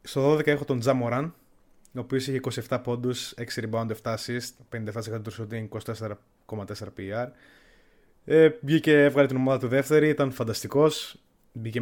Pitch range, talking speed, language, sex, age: 115-145 Hz, 140 wpm, Greek, male, 20-39